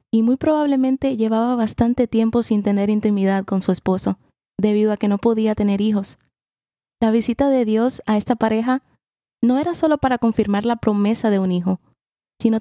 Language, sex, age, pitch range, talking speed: Spanish, female, 20-39, 210-245 Hz, 175 wpm